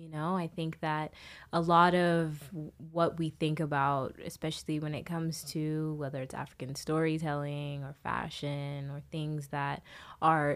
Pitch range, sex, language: 150-175 Hz, female, English